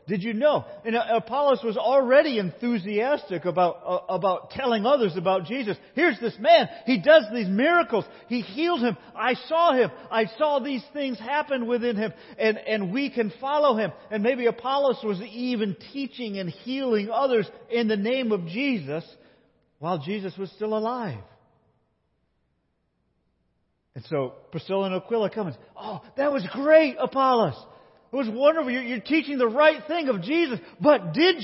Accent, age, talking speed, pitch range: American, 50-69, 165 wpm, 190-275 Hz